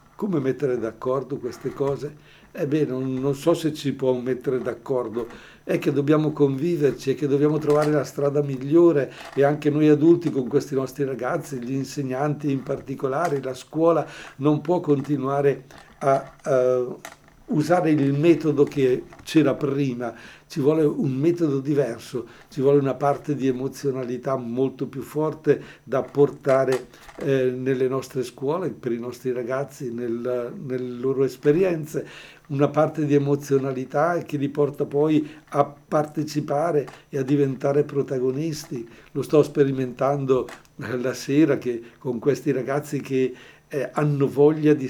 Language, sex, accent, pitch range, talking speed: Italian, male, native, 130-150 Hz, 140 wpm